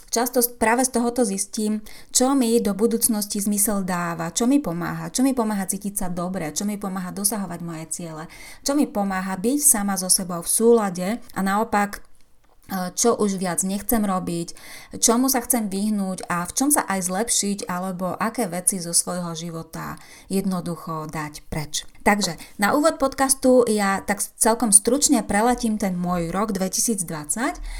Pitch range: 175-230 Hz